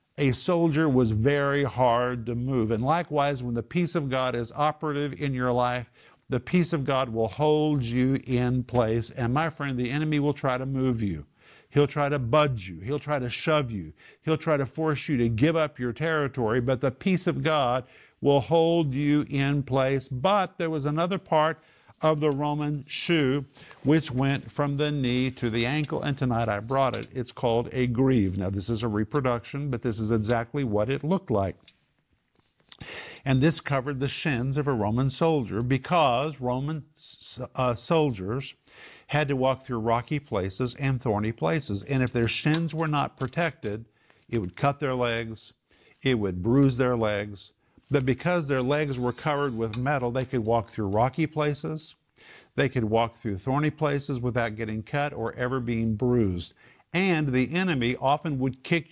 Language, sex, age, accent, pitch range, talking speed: English, male, 50-69, American, 120-150 Hz, 180 wpm